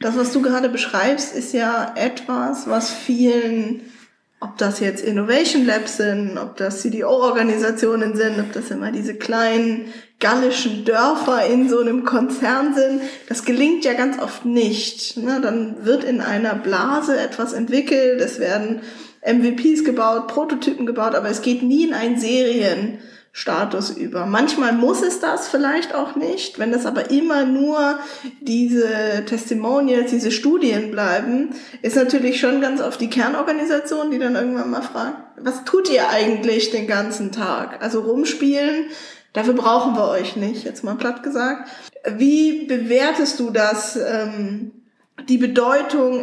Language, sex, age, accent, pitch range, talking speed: German, female, 20-39, German, 225-275 Hz, 145 wpm